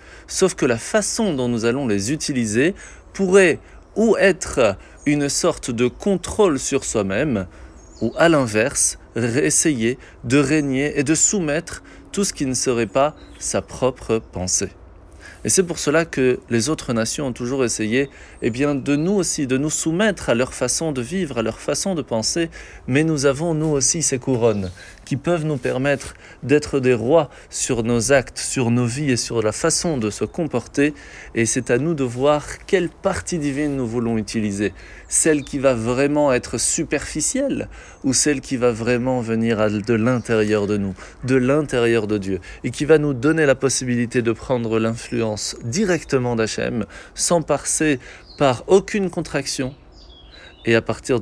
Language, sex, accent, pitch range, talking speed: French, male, French, 115-150 Hz, 170 wpm